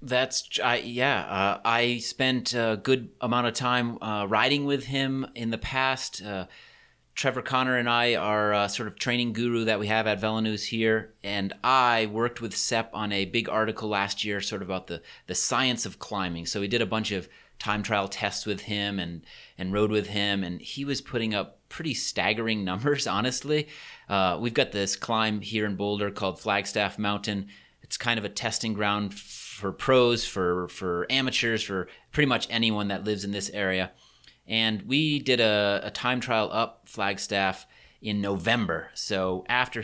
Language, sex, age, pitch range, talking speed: English, male, 30-49, 100-115 Hz, 185 wpm